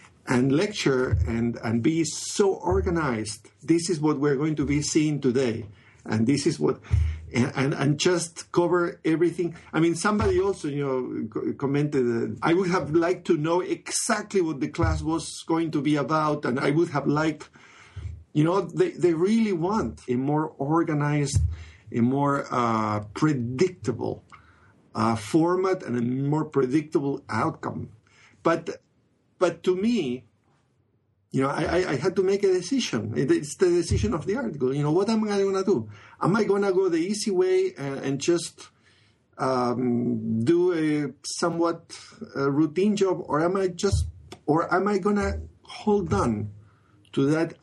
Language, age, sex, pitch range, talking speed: English, 50-69, male, 120-175 Hz, 170 wpm